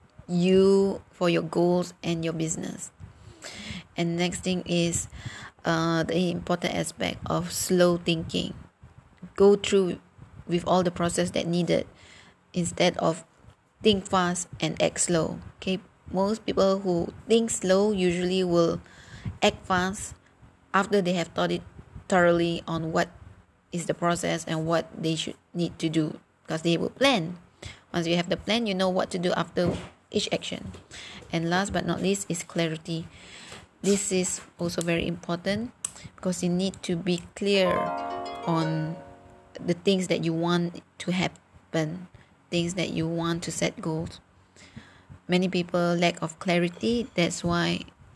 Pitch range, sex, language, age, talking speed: 165-185 Hz, female, English, 20-39, 145 wpm